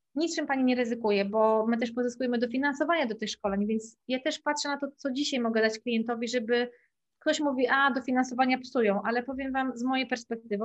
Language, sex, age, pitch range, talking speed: Polish, female, 20-39, 220-250 Hz, 195 wpm